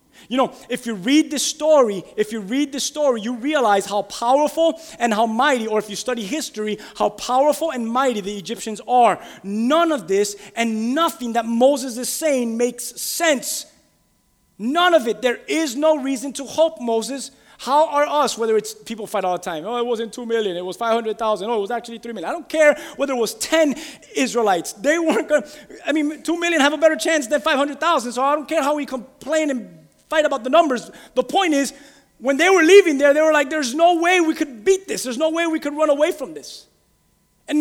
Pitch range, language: 240-315 Hz, English